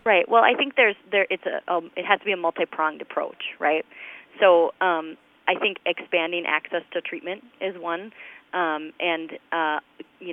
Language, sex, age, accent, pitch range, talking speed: English, female, 30-49, American, 165-195 Hz, 180 wpm